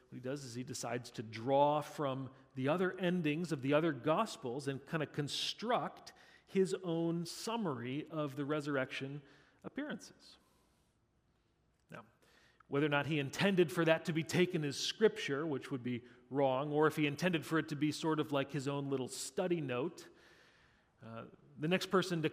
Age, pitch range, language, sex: 40-59, 130-170 Hz, English, male